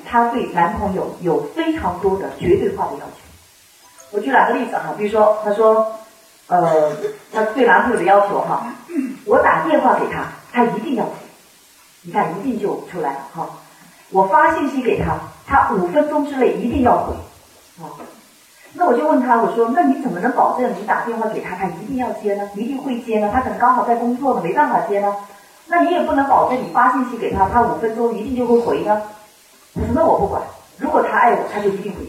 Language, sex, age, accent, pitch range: Chinese, female, 40-59, native, 210-275 Hz